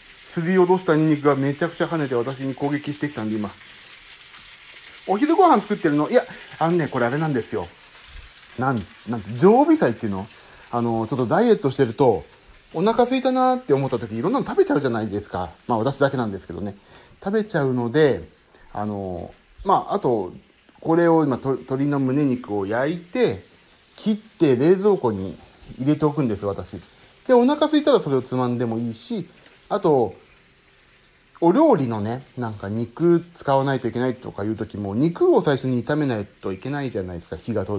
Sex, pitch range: male, 110-155 Hz